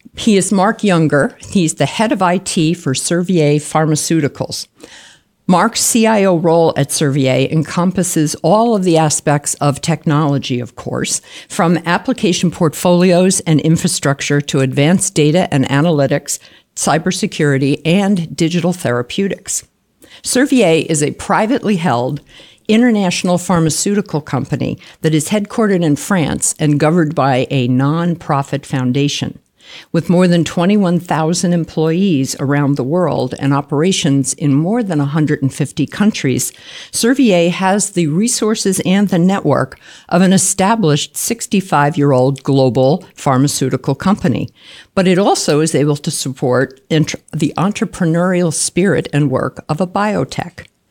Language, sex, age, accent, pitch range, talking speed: English, female, 50-69, American, 145-185 Hz, 120 wpm